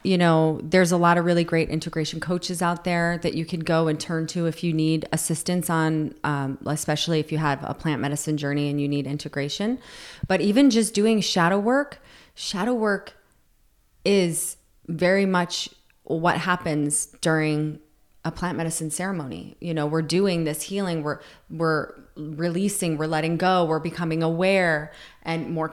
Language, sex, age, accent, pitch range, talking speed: English, female, 30-49, American, 160-185 Hz, 170 wpm